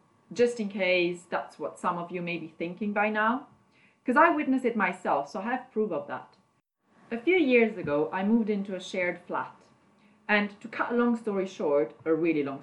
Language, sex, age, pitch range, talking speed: English, female, 30-49, 180-235 Hz, 210 wpm